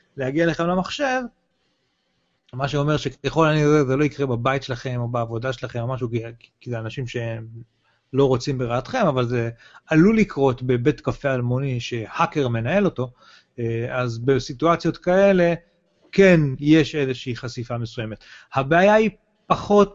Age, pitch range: 30-49, 130-175 Hz